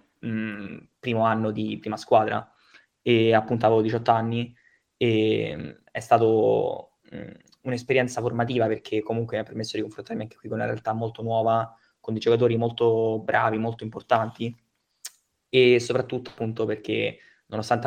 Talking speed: 140 wpm